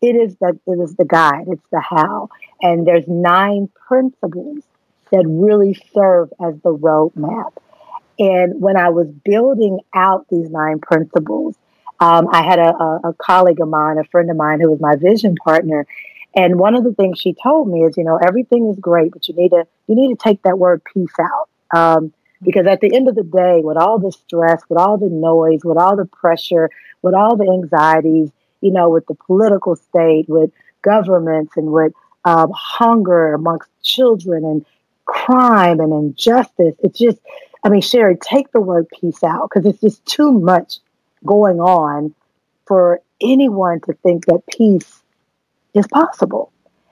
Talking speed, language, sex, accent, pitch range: 180 wpm, English, female, American, 165-205 Hz